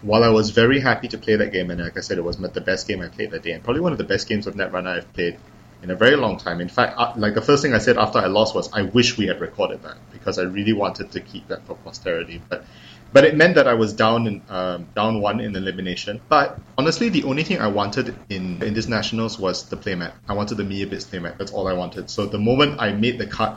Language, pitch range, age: English, 100-115 Hz, 20-39